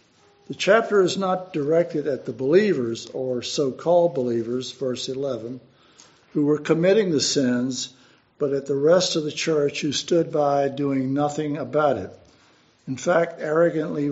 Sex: male